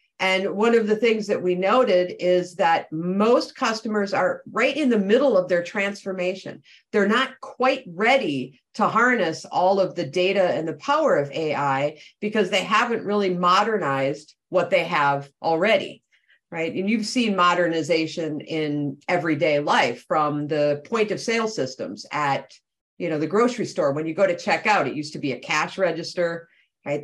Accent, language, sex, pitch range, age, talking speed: American, English, female, 170-225 Hz, 50-69, 175 wpm